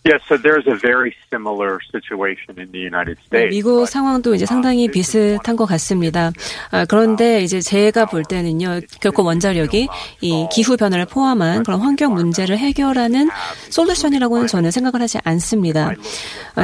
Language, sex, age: Korean, female, 30-49